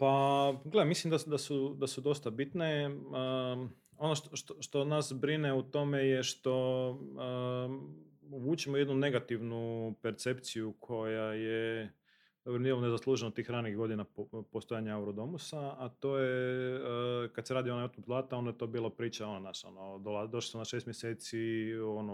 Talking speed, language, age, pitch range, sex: 165 wpm, Croatian, 30-49, 110-140 Hz, male